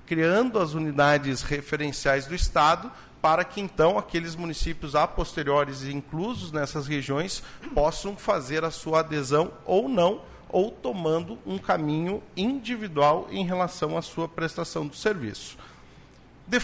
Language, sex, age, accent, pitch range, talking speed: Portuguese, male, 50-69, Brazilian, 150-185 Hz, 135 wpm